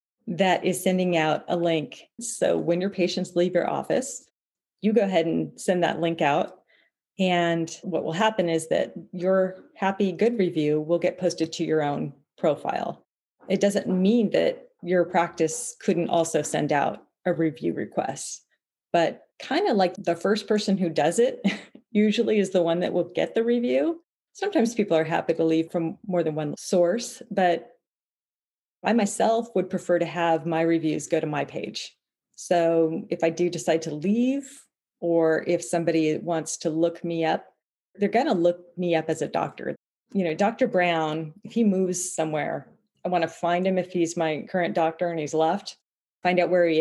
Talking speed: 185 wpm